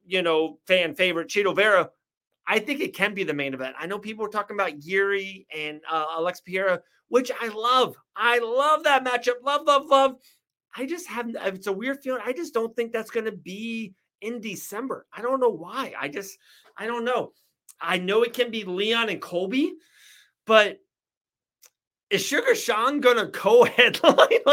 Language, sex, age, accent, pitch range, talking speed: English, male, 30-49, American, 165-230 Hz, 185 wpm